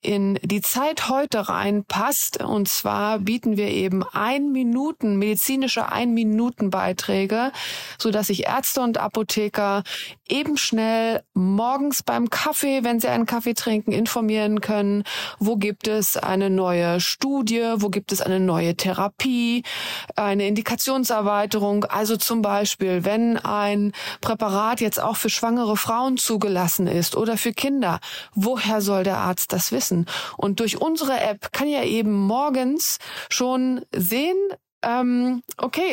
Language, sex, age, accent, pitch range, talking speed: German, female, 30-49, German, 200-245 Hz, 130 wpm